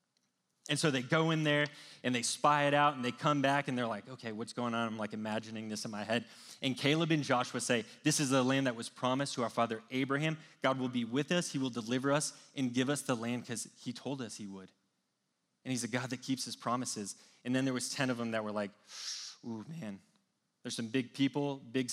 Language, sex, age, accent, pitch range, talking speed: English, male, 20-39, American, 115-145 Hz, 245 wpm